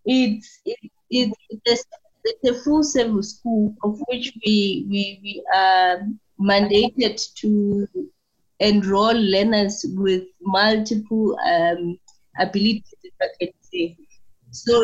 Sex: female